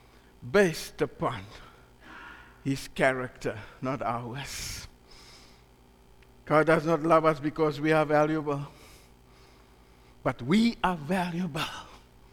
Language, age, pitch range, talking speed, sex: English, 60-79, 150-220 Hz, 90 wpm, male